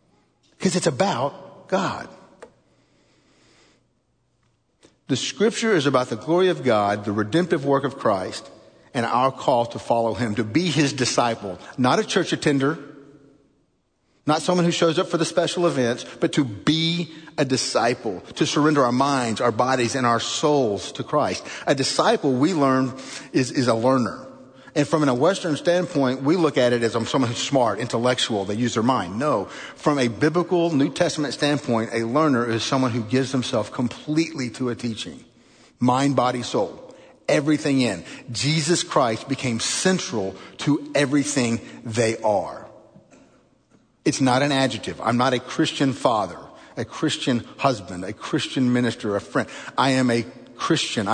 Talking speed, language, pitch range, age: 160 wpm, English, 120-155 Hz, 50-69